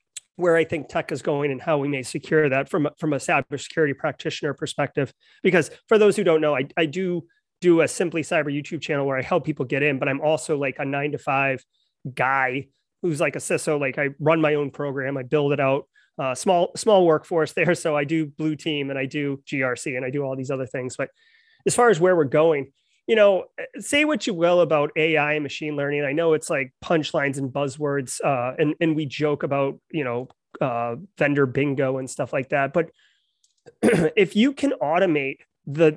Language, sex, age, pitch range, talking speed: English, male, 30-49, 140-170 Hz, 215 wpm